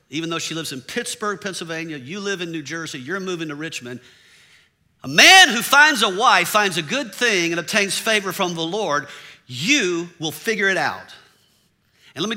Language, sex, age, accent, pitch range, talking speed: English, male, 50-69, American, 135-195 Hz, 195 wpm